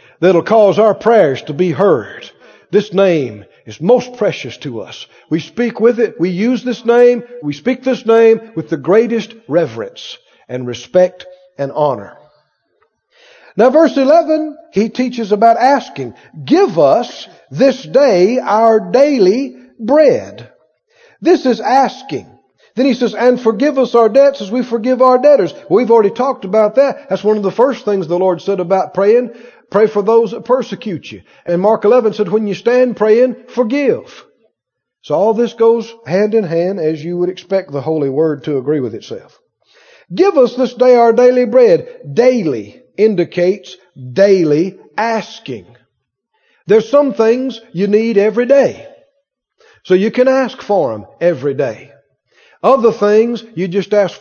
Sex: male